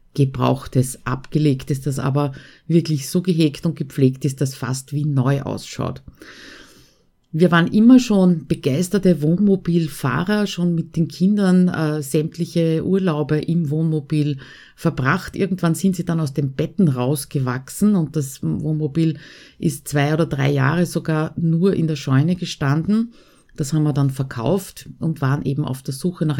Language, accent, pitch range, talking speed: German, Austrian, 140-180 Hz, 150 wpm